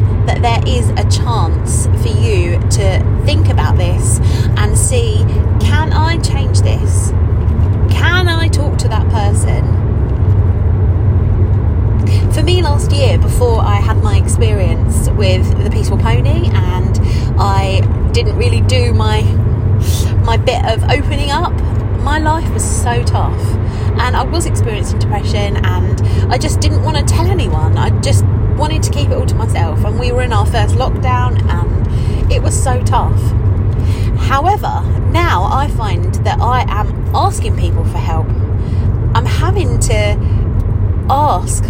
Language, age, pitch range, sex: English, 30-49, 95-105 Hz, female